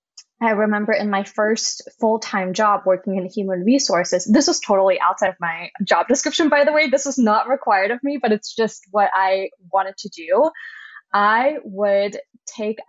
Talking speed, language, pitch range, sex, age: 180 wpm, English, 190-235 Hz, female, 10-29